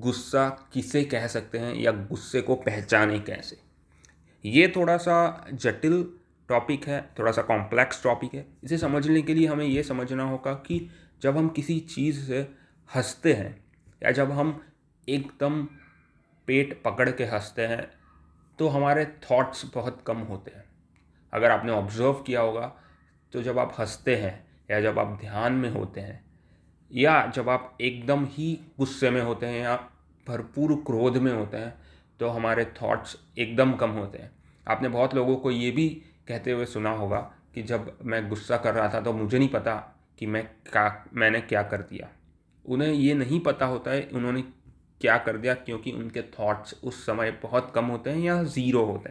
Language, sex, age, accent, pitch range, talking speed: Hindi, male, 30-49, native, 110-140 Hz, 175 wpm